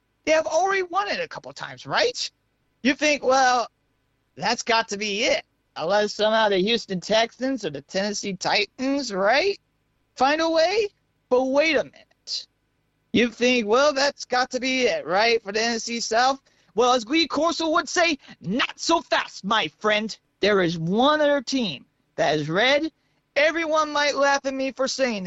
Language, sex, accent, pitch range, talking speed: English, male, American, 200-295 Hz, 175 wpm